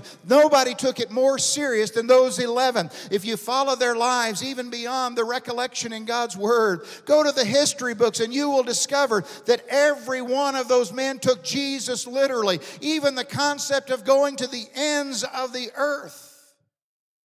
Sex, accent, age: male, American, 50-69